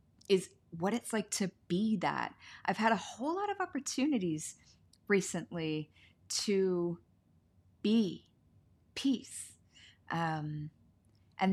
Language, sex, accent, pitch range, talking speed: English, female, American, 155-195 Hz, 105 wpm